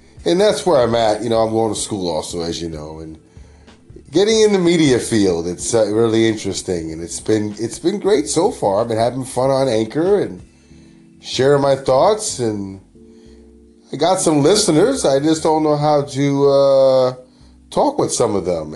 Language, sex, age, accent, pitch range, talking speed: English, male, 30-49, American, 85-125 Hz, 190 wpm